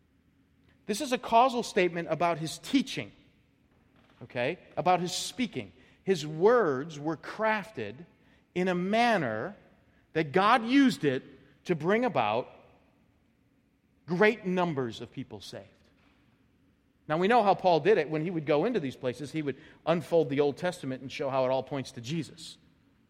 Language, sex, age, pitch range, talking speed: English, male, 40-59, 140-210 Hz, 155 wpm